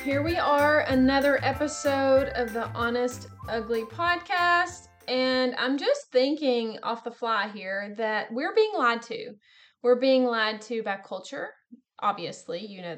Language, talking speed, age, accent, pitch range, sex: English, 150 wpm, 20-39, American, 215-280 Hz, female